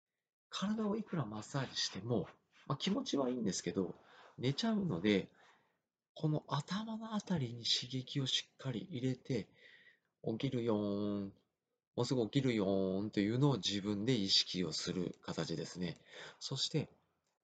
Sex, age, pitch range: male, 40-59, 100-150 Hz